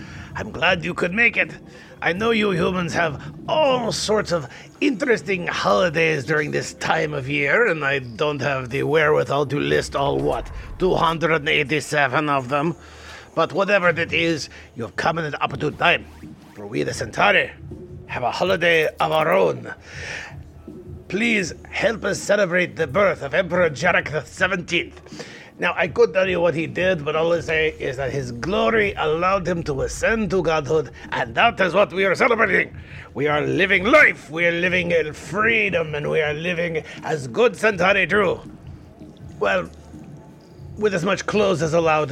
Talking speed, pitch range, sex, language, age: 170 wpm, 155-190 Hz, male, English, 50-69